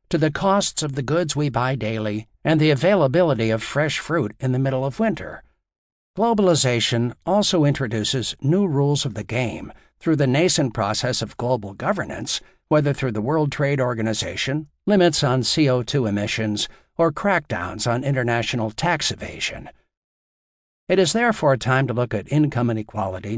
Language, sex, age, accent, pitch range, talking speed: English, male, 60-79, American, 110-155 Hz, 155 wpm